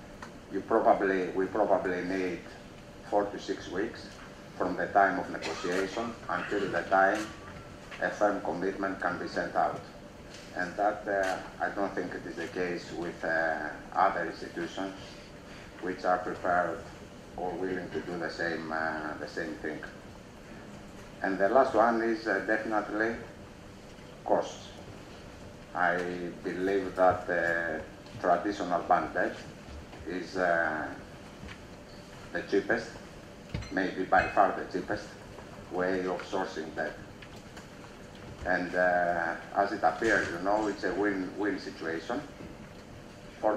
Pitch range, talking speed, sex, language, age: 90-100 Hz, 125 wpm, male, English, 50-69